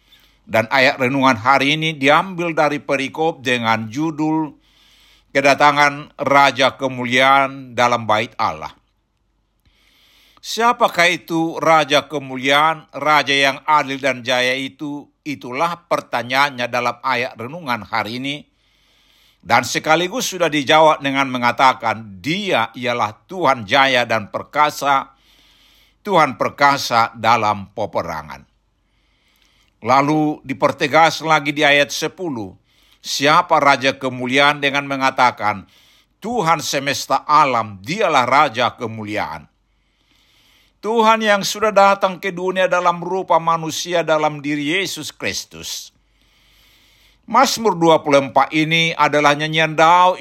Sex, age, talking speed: male, 60-79, 100 wpm